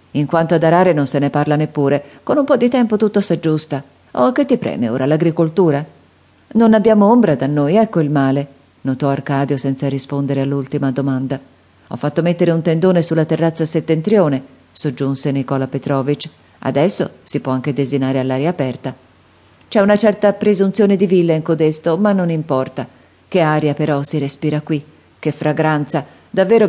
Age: 40-59